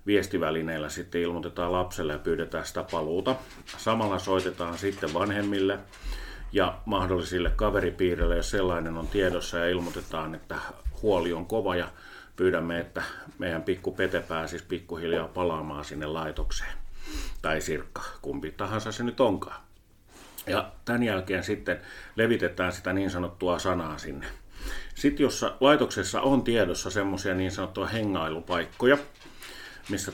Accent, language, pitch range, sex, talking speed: native, Finnish, 85-100 Hz, male, 125 wpm